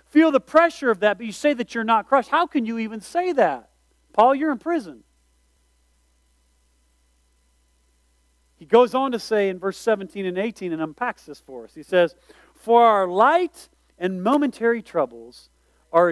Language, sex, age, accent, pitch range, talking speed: English, male, 40-59, American, 155-245 Hz, 170 wpm